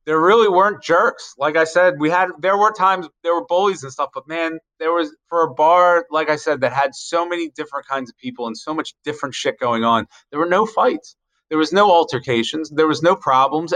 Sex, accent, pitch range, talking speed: male, American, 125-155 Hz, 235 wpm